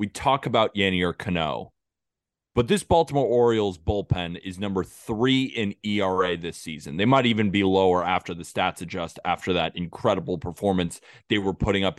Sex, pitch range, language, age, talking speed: male, 95-120 Hz, English, 20-39, 170 wpm